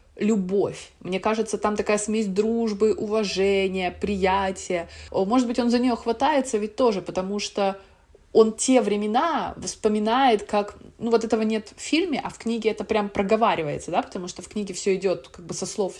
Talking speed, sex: 175 wpm, female